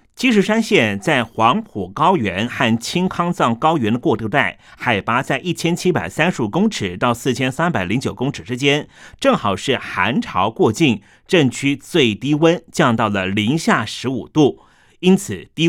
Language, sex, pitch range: Chinese, male, 120-180 Hz